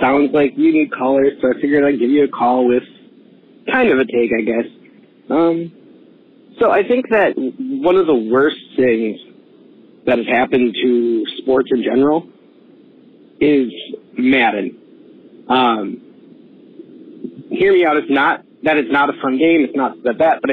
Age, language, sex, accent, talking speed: 40-59, English, male, American, 165 wpm